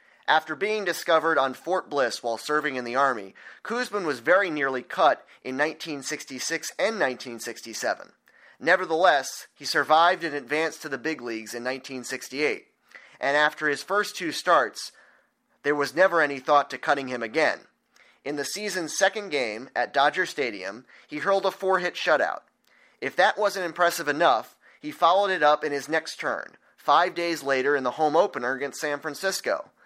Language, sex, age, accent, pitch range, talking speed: English, male, 30-49, American, 140-185 Hz, 165 wpm